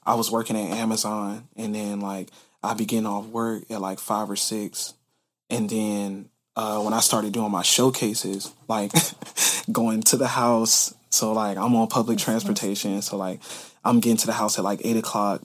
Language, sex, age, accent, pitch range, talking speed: English, male, 20-39, American, 105-115 Hz, 185 wpm